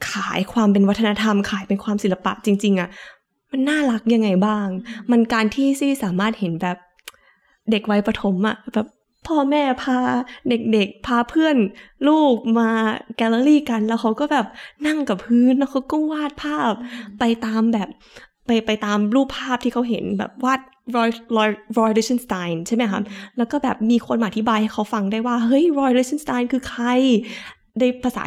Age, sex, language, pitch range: 20-39, female, Thai, 205-250 Hz